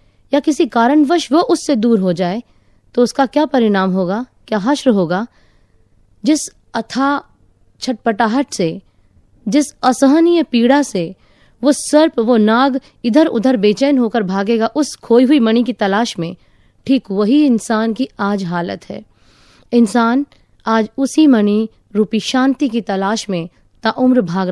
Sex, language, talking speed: female, Hindi, 140 wpm